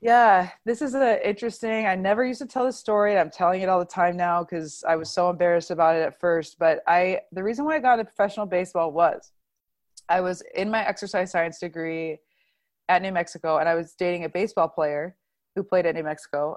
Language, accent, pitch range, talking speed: English, American, 165-200 Hz, 220 wpm